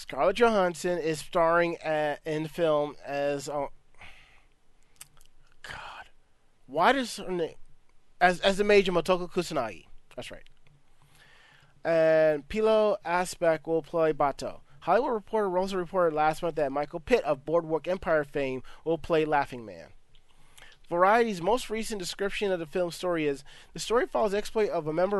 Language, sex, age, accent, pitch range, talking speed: English, male, 30-49, American, 155-185 Hz, 150 wpm